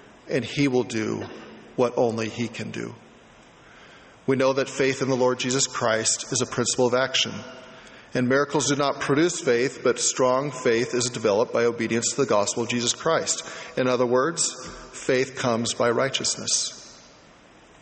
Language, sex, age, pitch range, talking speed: English, male, 40-59, 125-155 Hz, 165 wpm